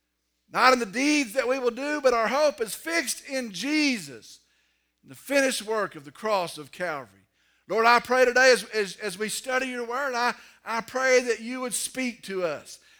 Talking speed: 205 wpm